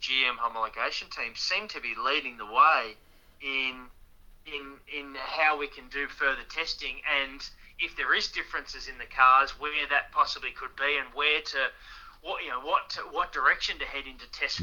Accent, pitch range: Australian, 125-145 Hz